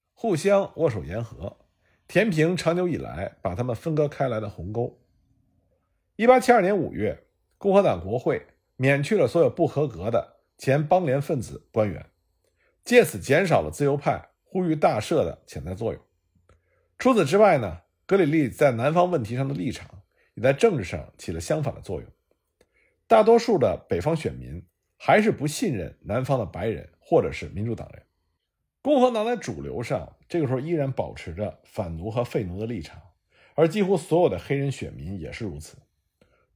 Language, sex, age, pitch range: Chinese, male, 50-69, 110-170 Hz